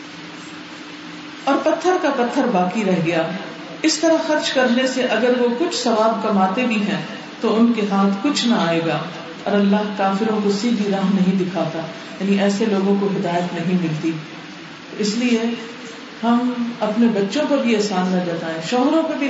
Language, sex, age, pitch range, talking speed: Urdu, female, 40-59, 195-260 Hz, 170 wpm